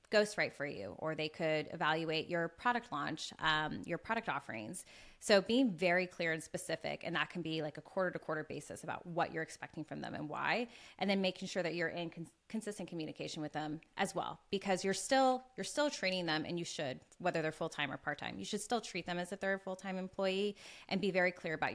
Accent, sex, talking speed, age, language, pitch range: American, female, 230 wpm, 20-39, English, 160-190 Hz